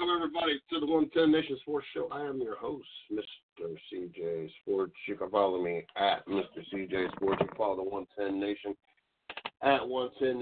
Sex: male